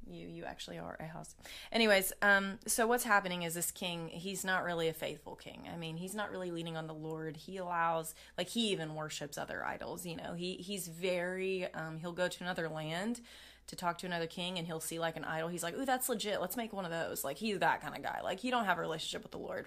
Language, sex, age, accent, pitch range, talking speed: English, female, 20-39, American, 165-205 Hz, 255 wpm